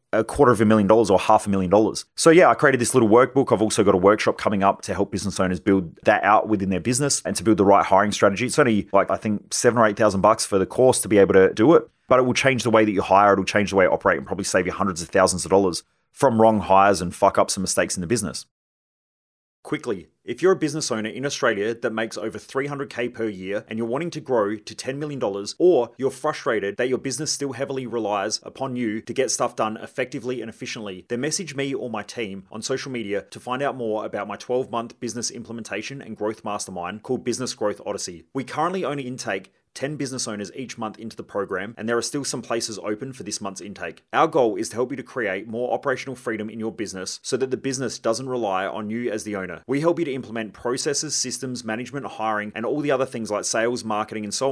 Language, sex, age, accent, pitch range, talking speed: English, male, 30-49, Australian, 105-130 Hz, 250 wpm